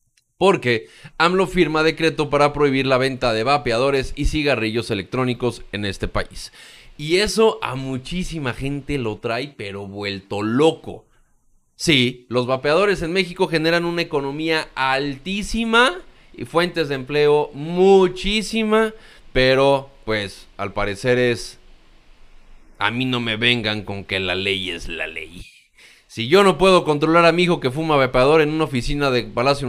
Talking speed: 150 wpm